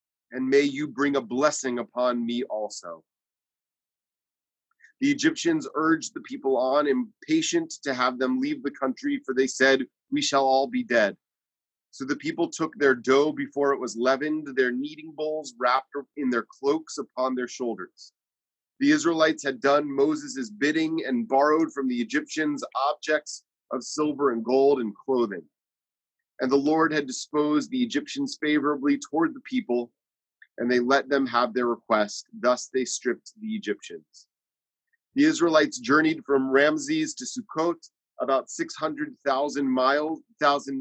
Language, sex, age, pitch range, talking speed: English, male, 30-49, 125-165 Hz, 150 wpm